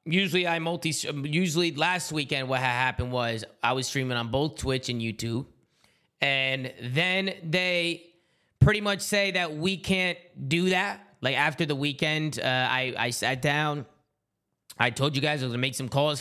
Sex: male